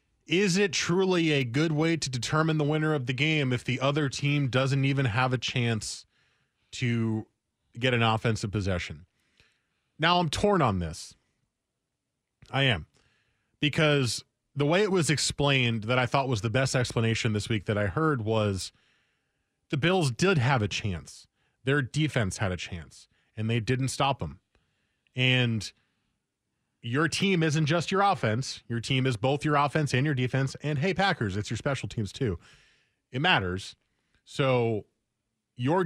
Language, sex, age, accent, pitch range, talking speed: English, male, 20-39, American, 110-145 Hz, 160 wpm